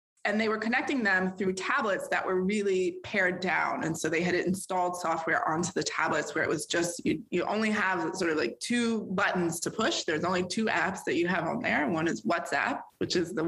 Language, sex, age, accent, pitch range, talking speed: English, female, 20-39, American, 170-220 Hz, 225 wpm